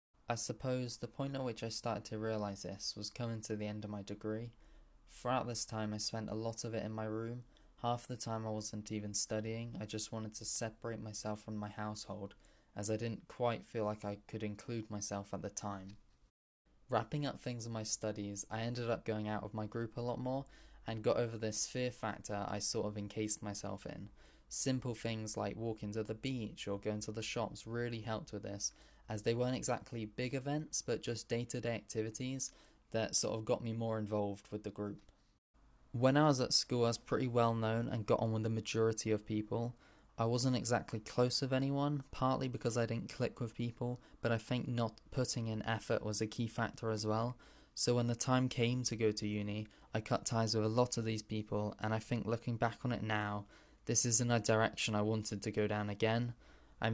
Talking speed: 220 wpm